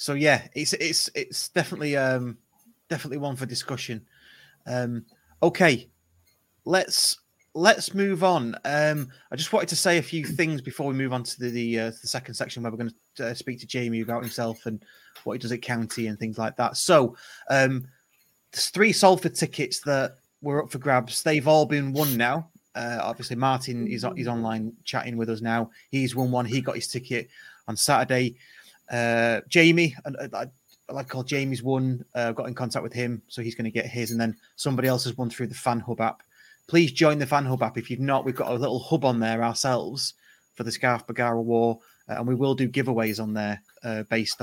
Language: English